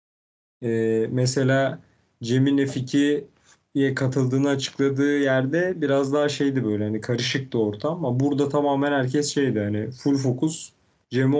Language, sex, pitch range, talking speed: Turkish, male, 125-165 Hz, 115 wpm